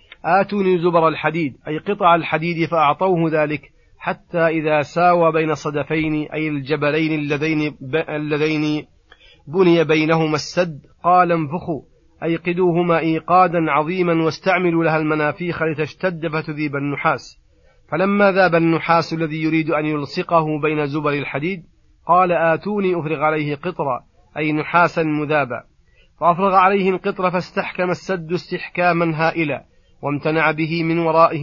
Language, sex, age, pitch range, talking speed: Arabic, male, 30-49, 155-170 Hz, 115 wpm